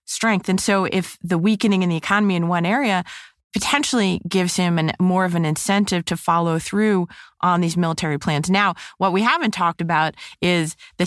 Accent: American